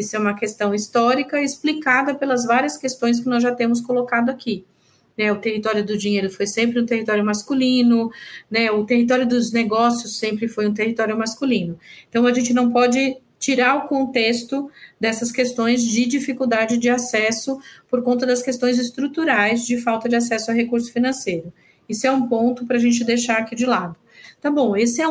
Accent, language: Brazilian, Portuguese